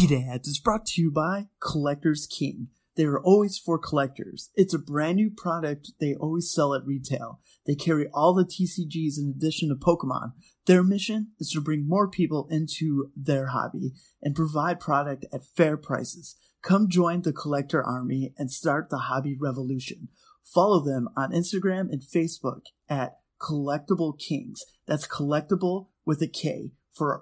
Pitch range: 140-180 Hz